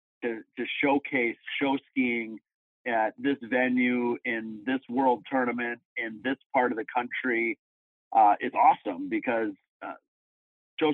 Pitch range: 115-135 Hz